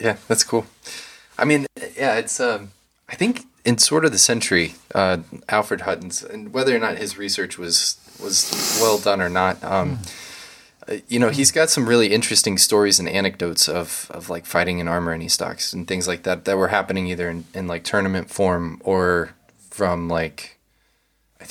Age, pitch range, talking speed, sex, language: 20-39, 90-110 Hz, 185 wpm, male, English